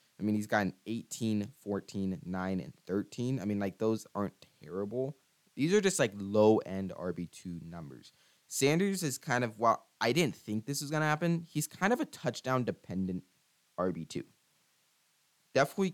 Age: 20-39